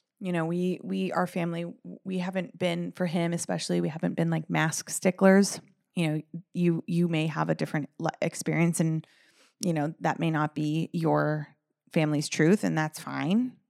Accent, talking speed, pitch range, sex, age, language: American, 175 wpm, 160-215 Hz, female, 20-39, English